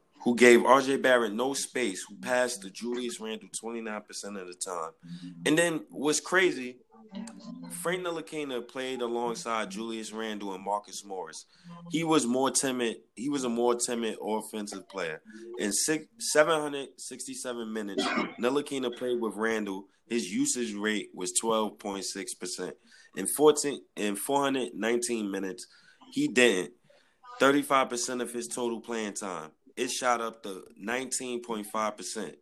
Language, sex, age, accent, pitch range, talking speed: English, male, 20-39, American, 105-155 Hz, 135 wpm